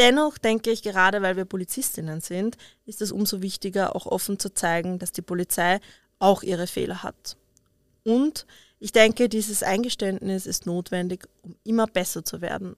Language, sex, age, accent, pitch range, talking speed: German, female, 20-39, German, 185-215 Hz, 165 wpm